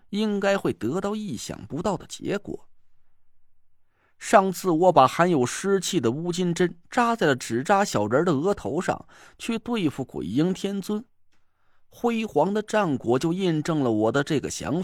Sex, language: male, Chinese